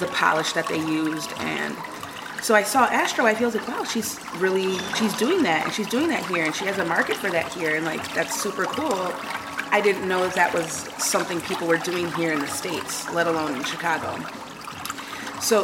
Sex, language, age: female, English, 30-49